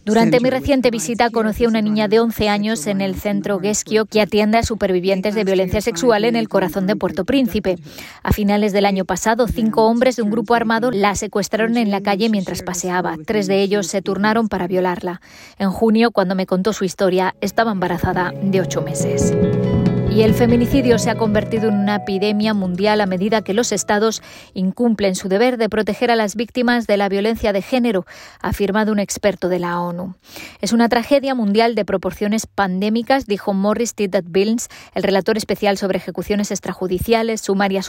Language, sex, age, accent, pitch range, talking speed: Spanish, female, 20-39, Spanish, 195-225 Hz, 185 wpm